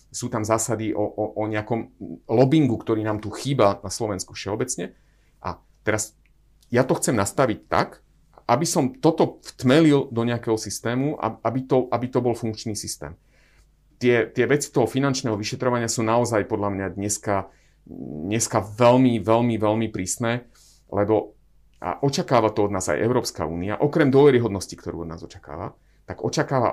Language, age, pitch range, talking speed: Slovak, 30-49, 105-130 Hz, 155 wpm